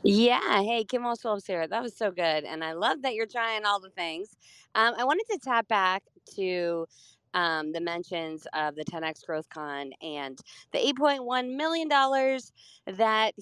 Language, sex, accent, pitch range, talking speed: English, female, American, 185-250 Hz, 175 wpm